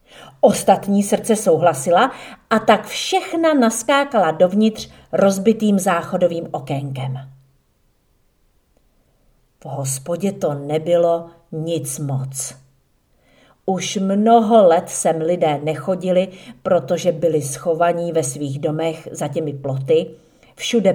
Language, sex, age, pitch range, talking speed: Czech, female, 50-69, 155-215 Hz, 95 wpm